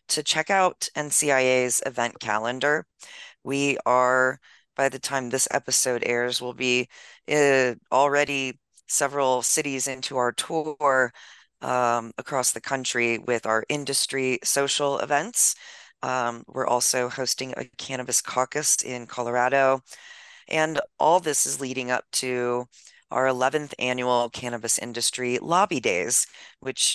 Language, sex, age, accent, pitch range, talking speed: English, female, 30-49, American, 125-150 Hz, 125 wpm